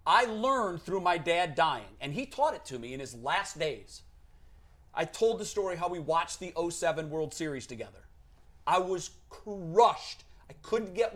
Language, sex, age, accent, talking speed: English, male, 40-59, American, 185 wpm